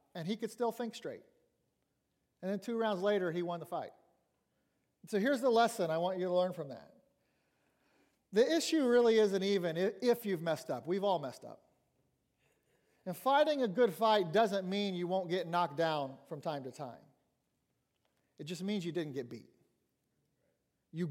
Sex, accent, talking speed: male, American, 180 wpm